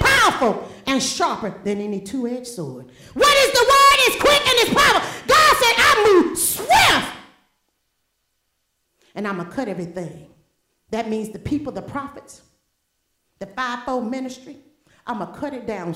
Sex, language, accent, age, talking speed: female, English, American, 40-59, 155 wpm